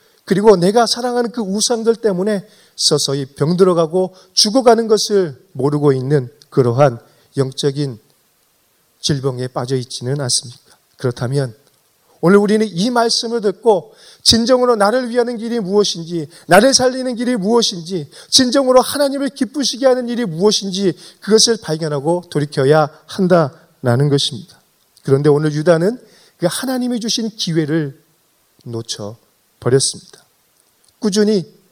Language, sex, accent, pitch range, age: Korean, male, native, 150-235 Hz, 30-49